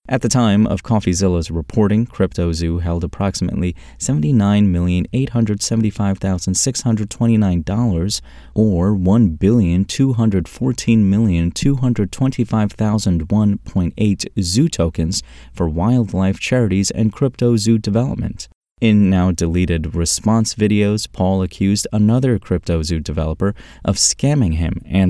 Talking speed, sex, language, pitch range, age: 80 wpm, male, English, 85-115 Hz, 30-49